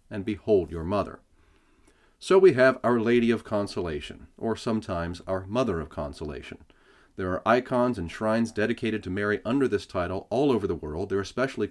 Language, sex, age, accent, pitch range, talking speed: English, male, 40-59, American, 95-115 Hz, 175 wpm